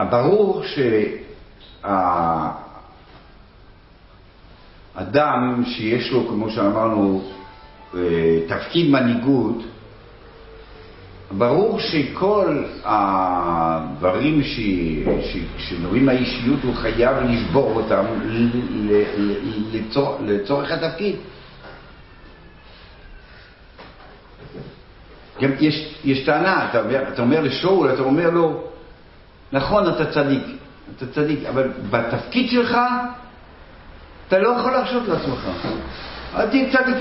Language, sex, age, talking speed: Hebrew, male, 60-79, 85 wpm